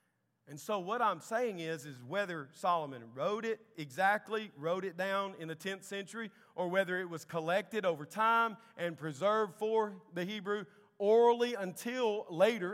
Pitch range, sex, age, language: 145-200 Hz, male, 40-59, English